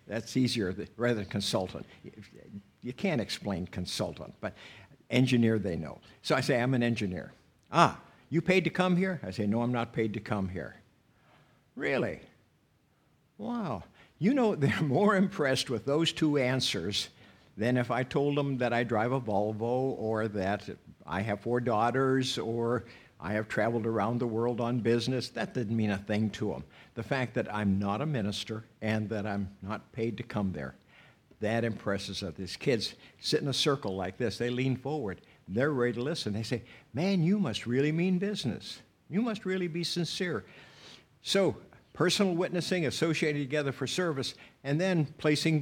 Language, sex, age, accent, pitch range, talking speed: English, male, 60-79, American, 105-145 Hz, 175 wpm